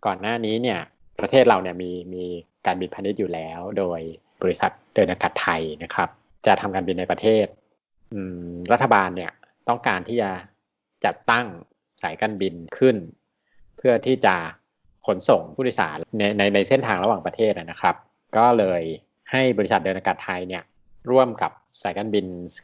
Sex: male